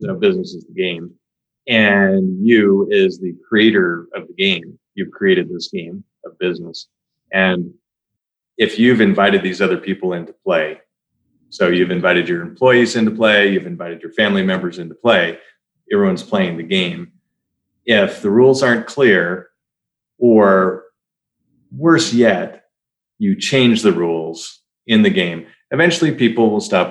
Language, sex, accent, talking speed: English, male, American, 145 wpm